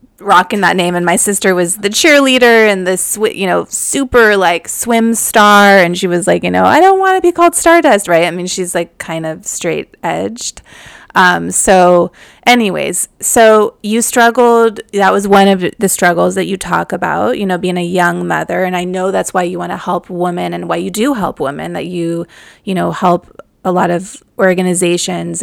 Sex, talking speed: female, 205 wpm